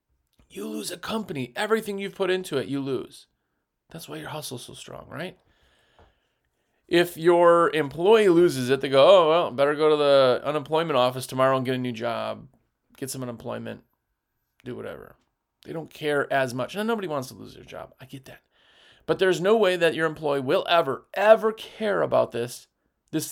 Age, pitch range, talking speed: 30-49, 140-200 Hz, 190 wpm